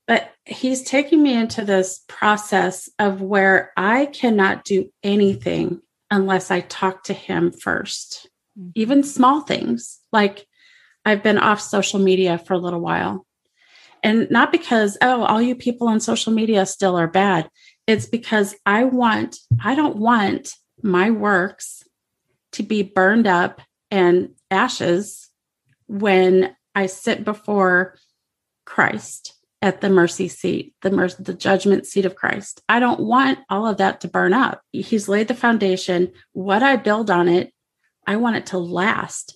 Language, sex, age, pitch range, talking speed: English, female, 30-49, 190-230 Hz, 150 wpm